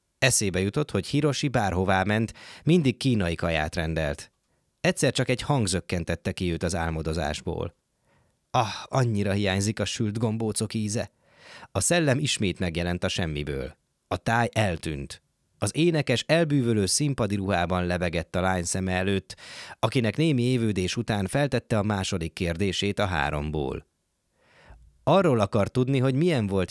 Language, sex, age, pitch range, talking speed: Hungarian, male, 20-39, 90-120 Hz, 135 wpm